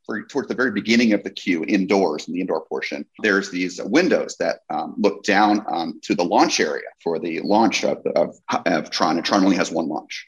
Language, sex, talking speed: English, male, 220 wpm